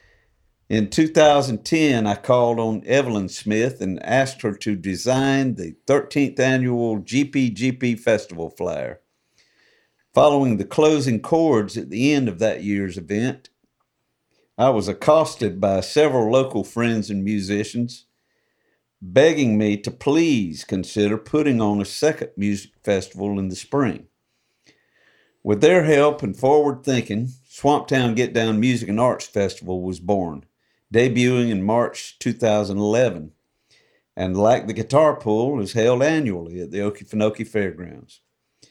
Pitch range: 105-135 Hz